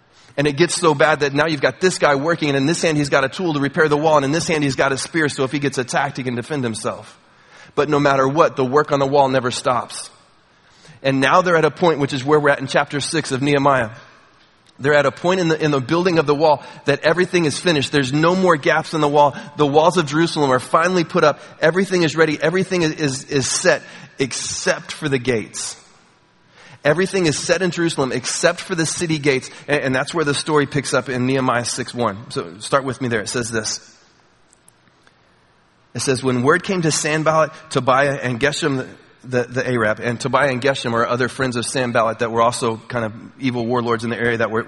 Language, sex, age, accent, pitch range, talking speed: English, male, 30-49, American, 130-155 Hz, 230 wpm